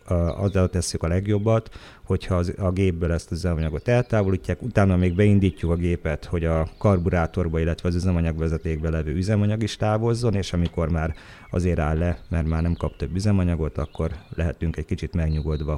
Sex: male